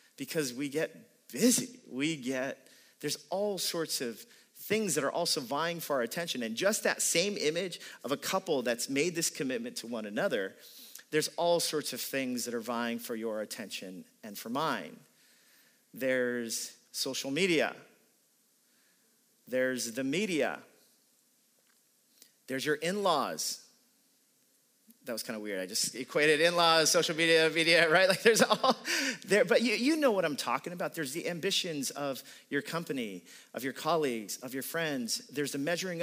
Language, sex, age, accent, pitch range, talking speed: English, male, 40-59, American, 140-230 Hz, 160 wpm